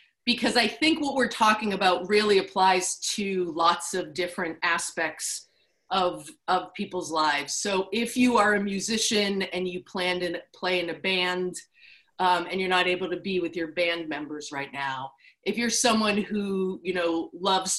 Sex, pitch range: female, 180-230 Hz